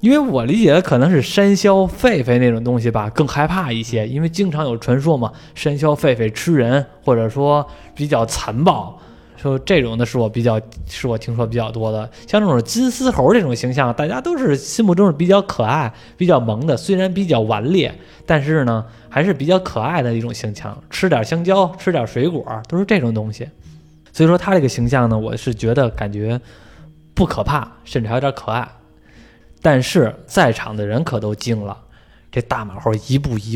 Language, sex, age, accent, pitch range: Chinese, male, 20-39, native, 110-150 Hz